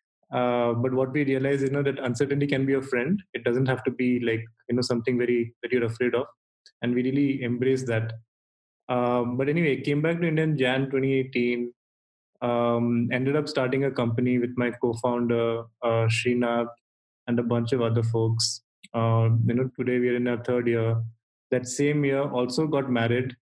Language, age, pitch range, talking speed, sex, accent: English, 20-39, 120-135 Hz, 190 wpm, male, Indian